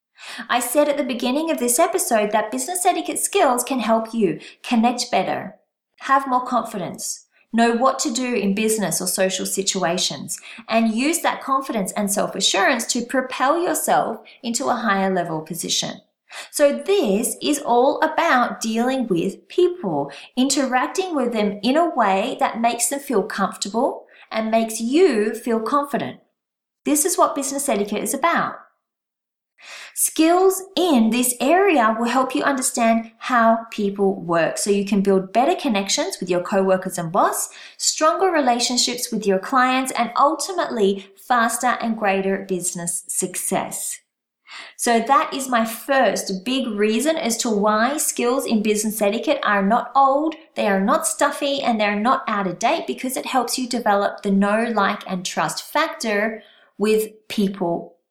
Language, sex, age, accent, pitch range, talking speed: English, female, 30-49, Australian, 205-275 Hz, 155 wpm